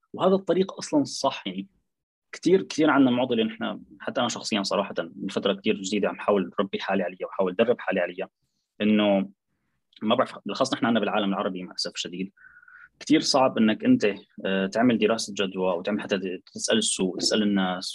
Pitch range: 100-135 Hz